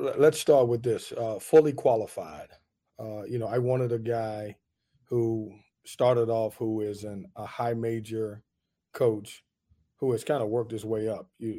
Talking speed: 170 wpm